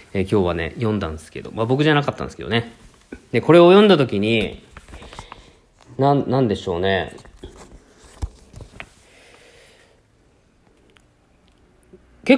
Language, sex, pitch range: Japanese, male, 95-125 Hz